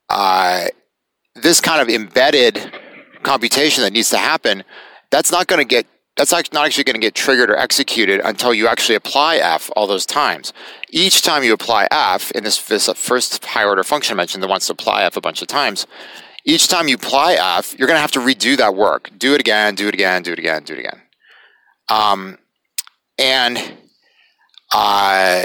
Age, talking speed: 30-49, 190 wpm